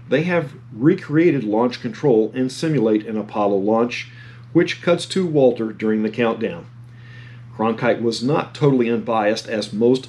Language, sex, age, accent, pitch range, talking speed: English, male, 40-59, American, 115-140 Hz, 145 wpm